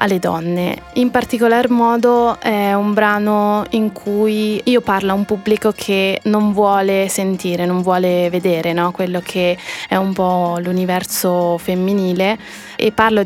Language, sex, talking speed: Italian, female, 145 wpm